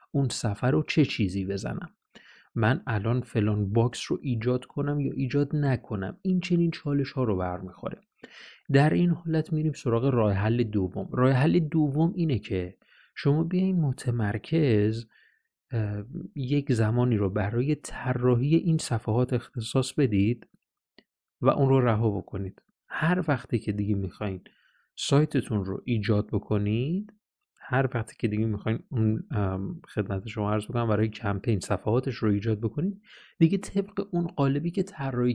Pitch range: 105-145 Hz